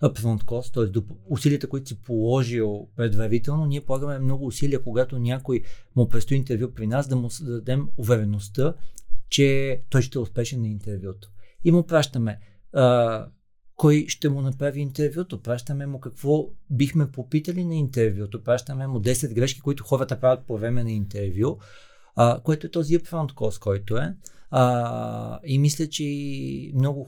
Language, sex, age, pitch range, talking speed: Bulgarian, male, 40-59, 110-140 Hz, 155 wpm